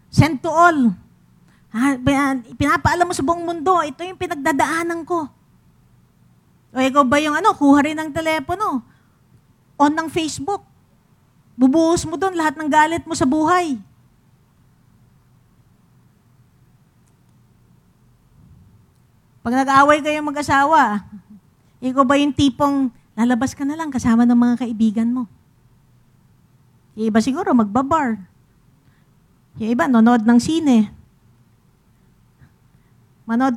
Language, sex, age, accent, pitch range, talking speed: English, female, 40-59, Filipino, 225-315 Hz, 105 wpm